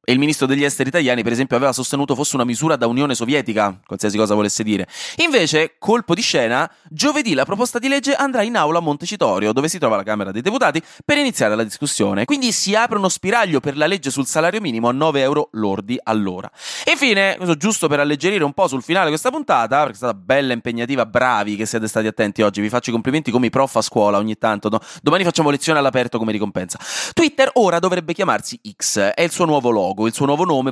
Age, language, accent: 20-39, Italian, native